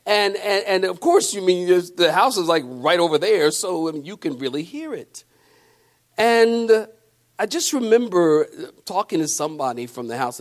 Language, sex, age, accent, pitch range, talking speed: English, male, 50-69, American, 155-225 Hz, 185 wpm